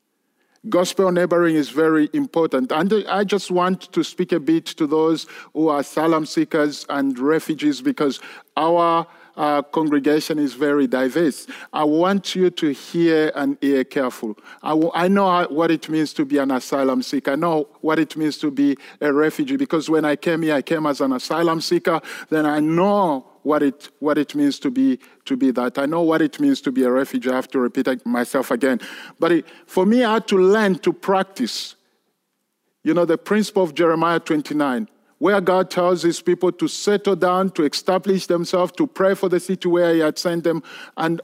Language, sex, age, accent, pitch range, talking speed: English, male, 50-69, French, 150-190 Hz, 195 wpm